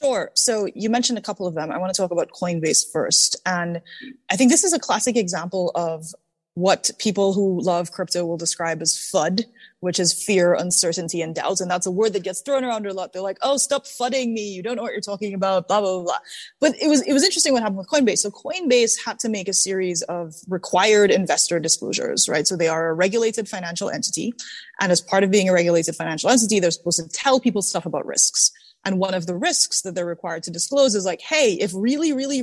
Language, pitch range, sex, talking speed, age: English, 180-245 Hz, female, 235 wpm, 20-39